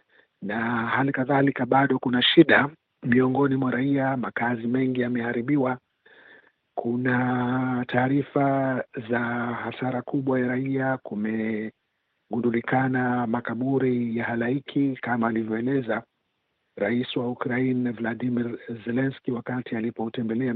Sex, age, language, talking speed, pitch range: male, 50-69, Swahili, 95 wpm, 125-140 Hz